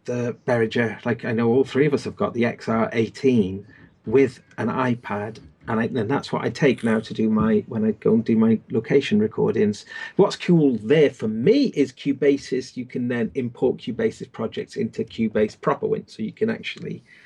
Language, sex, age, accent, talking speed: English, male, 40-59, British, 195 wpm